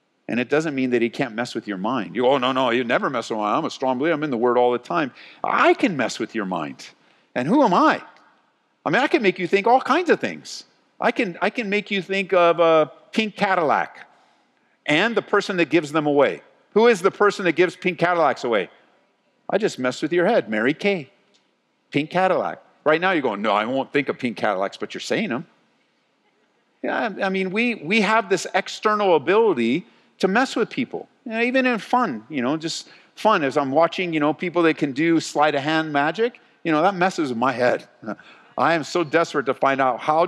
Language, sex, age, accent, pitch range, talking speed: English, male, 50-69, American, 150-215 Hz, 230 wpm